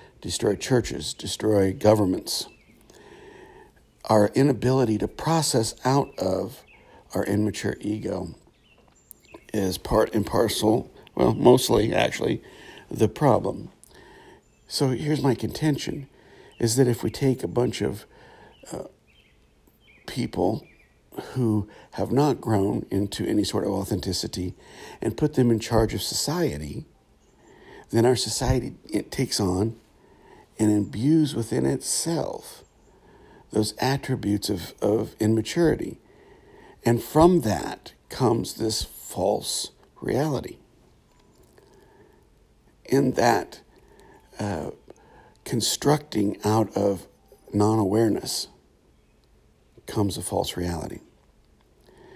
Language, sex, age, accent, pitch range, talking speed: English, male, 60-79, American, 105-130 Hz, 100 wpm